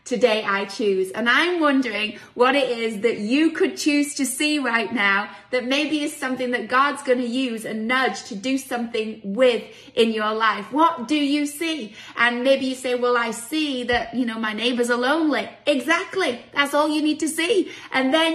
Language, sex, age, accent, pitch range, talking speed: English, female, 30-49, British, 225-285 Hz, 205 wpm